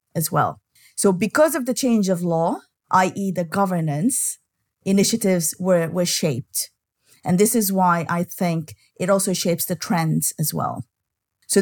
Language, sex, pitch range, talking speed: English, female, 170-215 Hz, 155 wpm